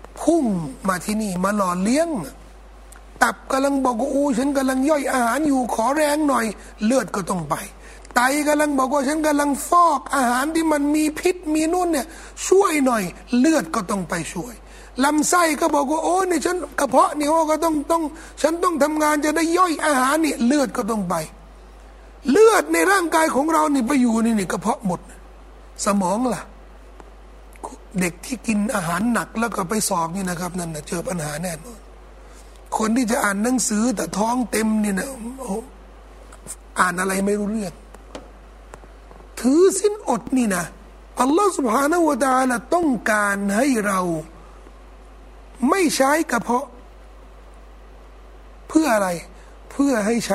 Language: Thai